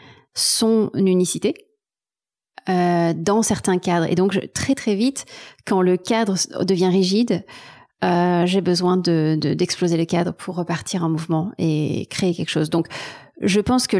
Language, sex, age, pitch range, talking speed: French, female, 30-49, 170-210 Hz, 160 wpm